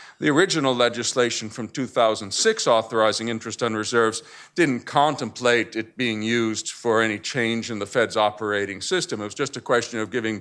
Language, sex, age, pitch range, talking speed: English, male, 50-69, 110-135 Hz, 165 wpm